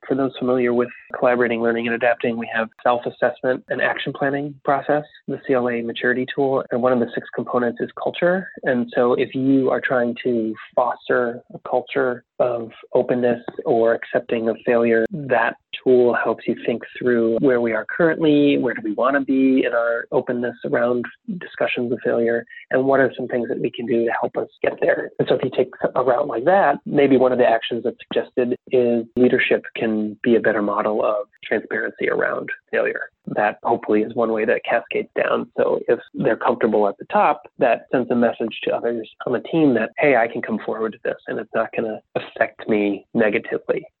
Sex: male